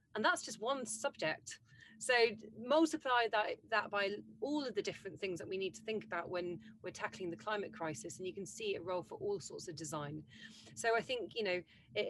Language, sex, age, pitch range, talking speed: English, female, 30-49, 170-220 Hz, 220 wpm